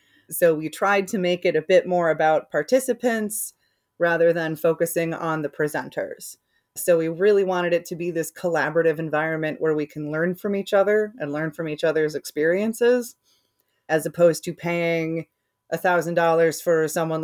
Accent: American